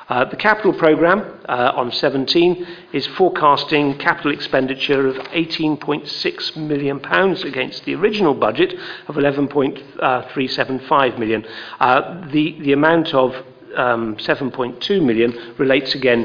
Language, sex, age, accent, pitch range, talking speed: English, male, 50-69, British, 130-150 Hz, 150 wpm